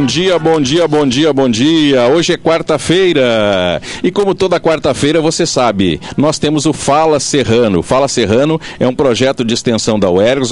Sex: male